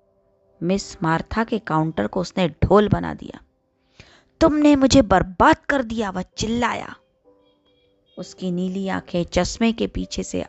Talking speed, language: 130 wpm, Hindi